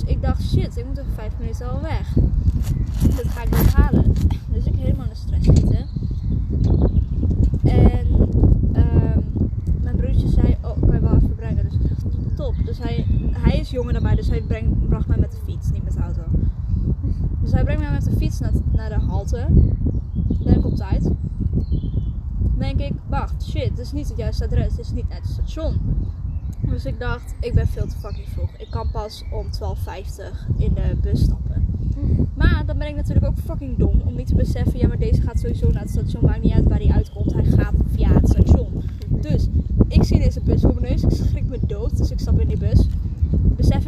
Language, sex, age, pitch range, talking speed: Dutch, female, 20-39, 80-100 Hz, 210 wpm